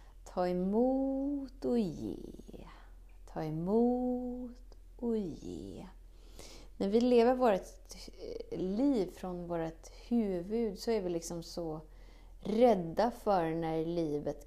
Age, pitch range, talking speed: 30-49, 160-225 Hz, 105 wpm